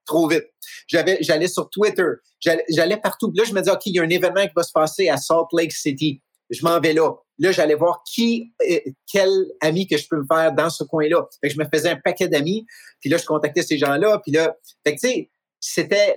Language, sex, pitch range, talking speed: French, male, 135-195 Hz, 250 wpm